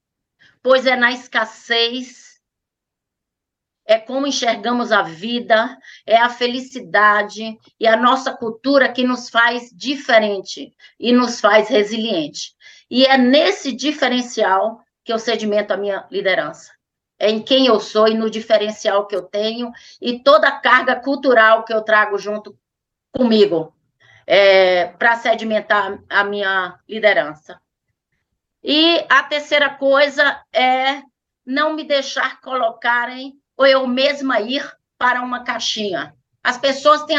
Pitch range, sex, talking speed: 220-270 Hz, female, 125 wpm